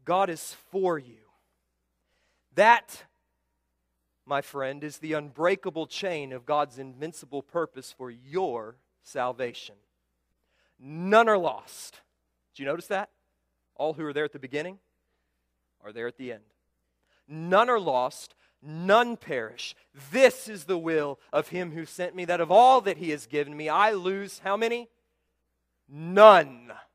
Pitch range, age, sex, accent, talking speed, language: 125-210 Hz, 40-59, male, American, 145 wpm, English